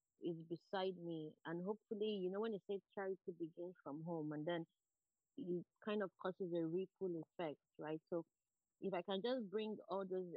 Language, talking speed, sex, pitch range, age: English, 185 wpm, female, 170-210 Hz, 20-39